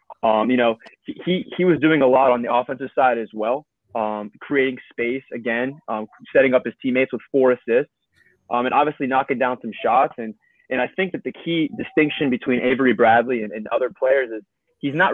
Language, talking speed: English, 205 wpm